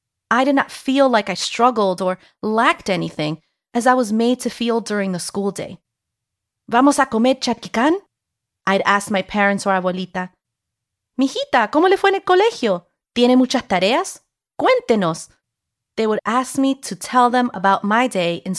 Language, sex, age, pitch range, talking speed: English, female, 30-49, 170-245 Hz, 170 wpm